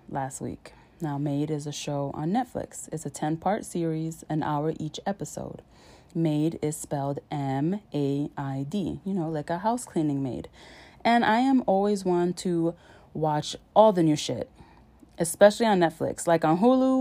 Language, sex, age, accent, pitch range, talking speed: English, female, 20-39, American, 150-190 Hz, 175 wpm